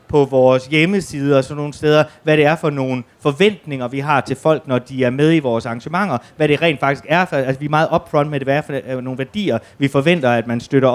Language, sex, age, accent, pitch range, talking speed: Danish, male, 30-49, native, 125-155 Hz, 240 wpm